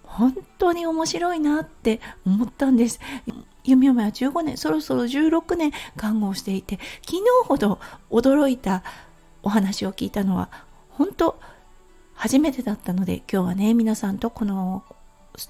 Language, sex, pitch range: Japanese, female, 210-315 Hz